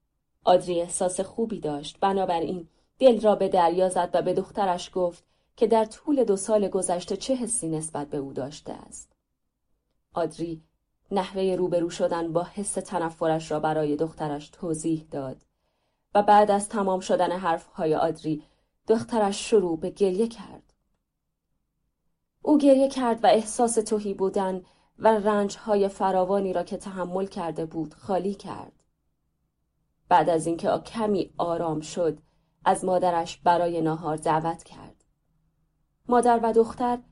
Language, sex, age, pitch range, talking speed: Persian, female, 30-49, 165-210 Hz, 135 wpm